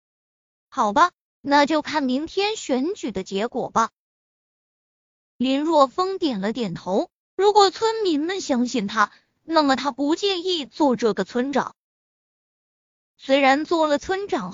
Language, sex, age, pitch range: Chinese, female, 20-39, 230-345 Hz